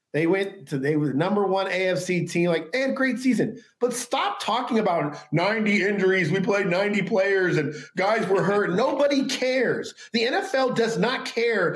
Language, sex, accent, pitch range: English, male, American, 180-255 Hz